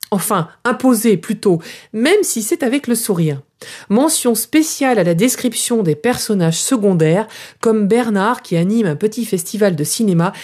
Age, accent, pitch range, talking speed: 40-59, French, 175-250 Hz, 150 wpm